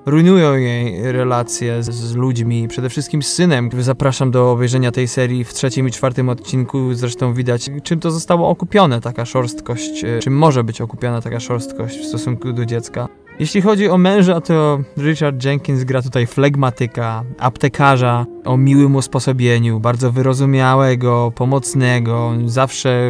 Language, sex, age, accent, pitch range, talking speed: Polish, male, 20-39, native, 120-145 Hz, 145 wpm